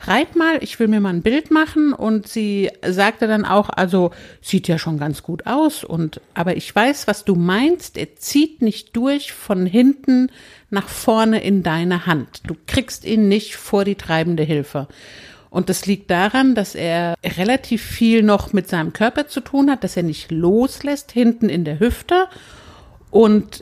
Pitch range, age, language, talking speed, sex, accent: 175-245 Hz, 60-79, German, 180 wpm, female, German